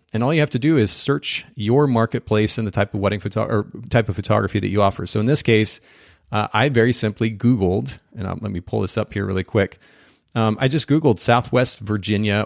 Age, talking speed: 40-59, 230 wpm